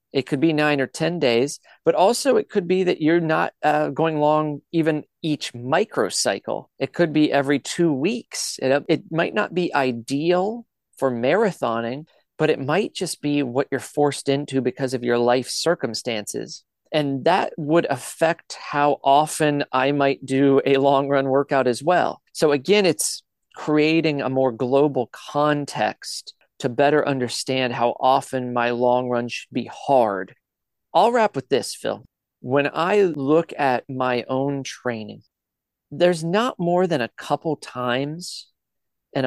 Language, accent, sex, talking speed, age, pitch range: English, American, male, 155 wpm, 40-59, 130-160 Hz